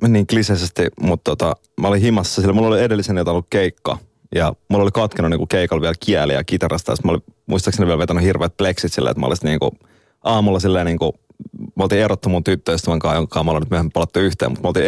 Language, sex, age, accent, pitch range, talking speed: Finnish, male, 30-49, native, 90-105 Hz, 220 wpm